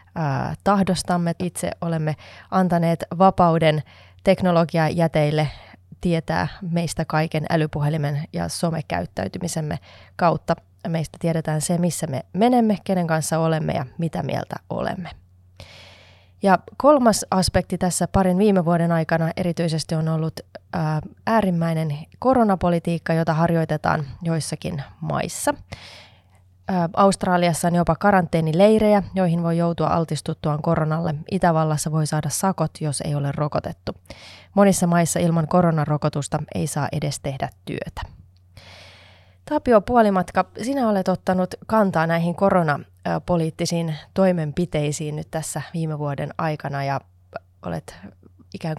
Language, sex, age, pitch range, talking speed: Finnish, female, 20-39, 150-180 Hz, 105 wpm